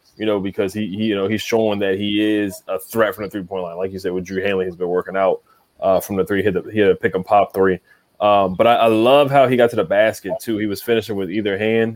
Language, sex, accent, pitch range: English, male, American, 95-115 Hz